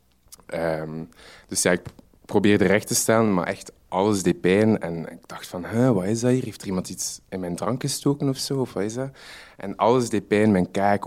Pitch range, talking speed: 85-105 Hz, 200 wpm